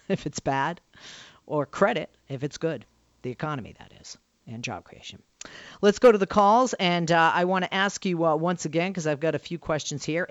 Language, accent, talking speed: English, American, 215 wpm